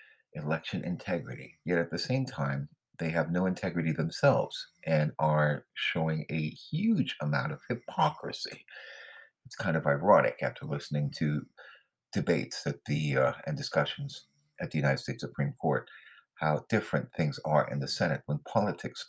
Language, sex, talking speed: English, male, 150 wpm